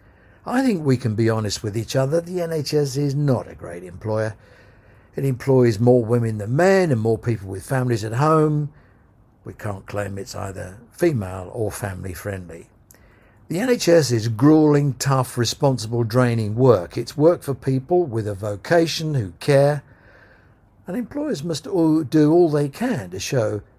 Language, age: English, 60-79